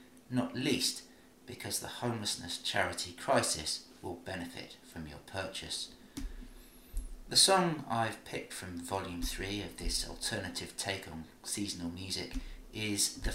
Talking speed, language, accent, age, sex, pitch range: 125 wpm, English, British, 40-59, male, 85-115 Hz